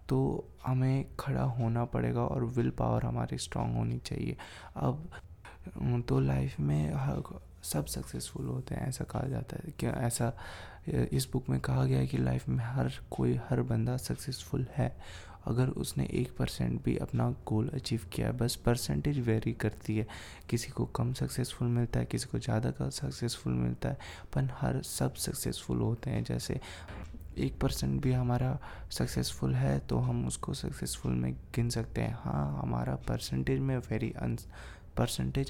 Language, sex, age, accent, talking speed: Hindi, male, 20-39, native, 160 wpm